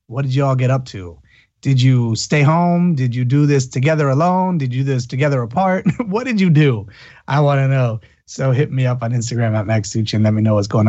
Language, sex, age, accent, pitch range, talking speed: English, male, 30-49, American, 120-175 Hz, 250 wpm